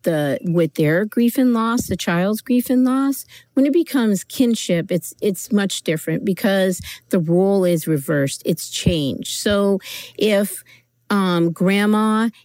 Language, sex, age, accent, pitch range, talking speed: English, female, 50-69, American, 160-205 Hz, 145 wpm